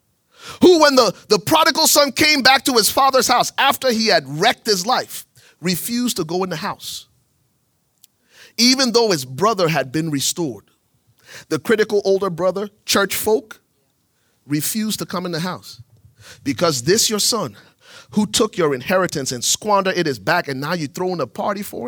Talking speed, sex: 175 wpm, male